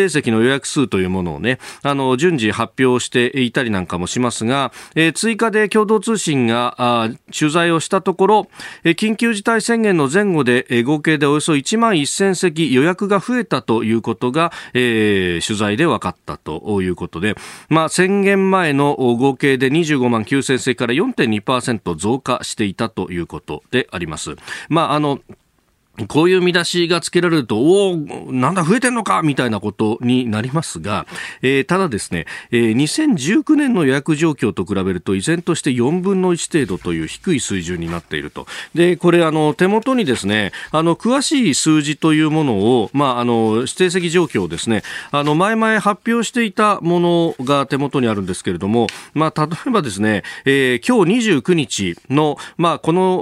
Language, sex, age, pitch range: Japanese, male, 40-59, 115-180 Hz